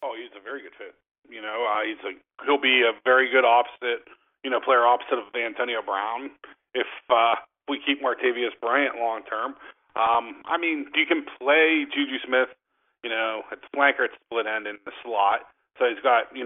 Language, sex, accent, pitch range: English, male, American, 120-160 Hz